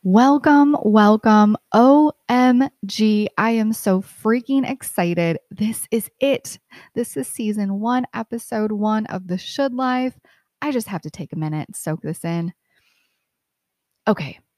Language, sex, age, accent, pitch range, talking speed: English, female, 20-39, American, 185-235 Hz, 135 wpm